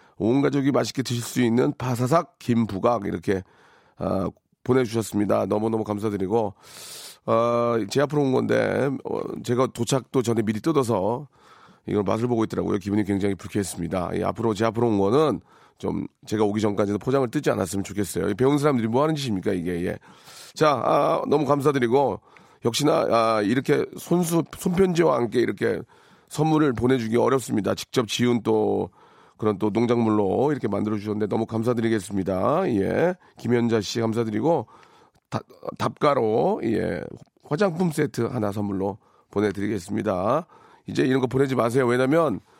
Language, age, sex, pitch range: Korean, 40-59, male, 105-135 Hz